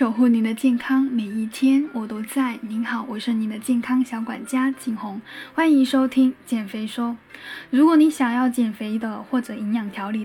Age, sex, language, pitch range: 10-29, female, Chinese, 230-275 Hz